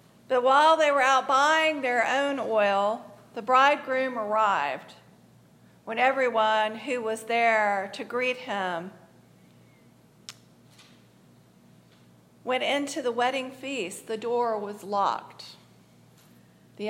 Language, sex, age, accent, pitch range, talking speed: English, female, 50-69, American, 195-280 Hz, 105 wpm